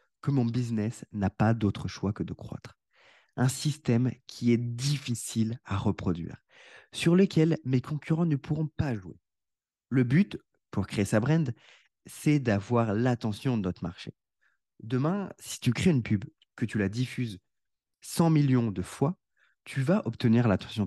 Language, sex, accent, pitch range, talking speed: French, male, French, 105-145 Hz, 160 wpm